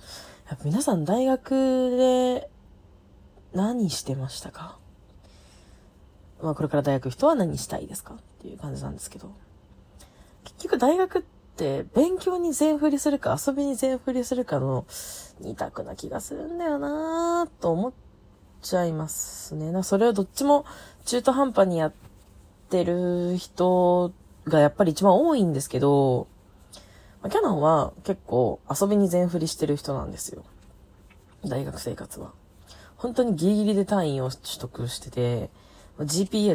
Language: Japanese